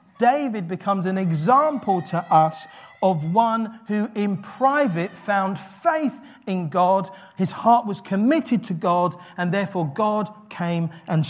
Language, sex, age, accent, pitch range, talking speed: English, male, 40-59, British, 150-215 Hz, 140 wpm